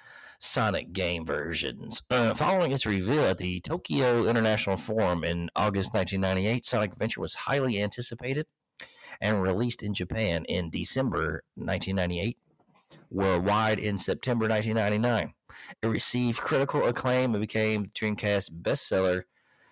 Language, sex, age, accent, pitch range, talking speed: English, male, 40-59, American, 90-115 Hz, 120 wpm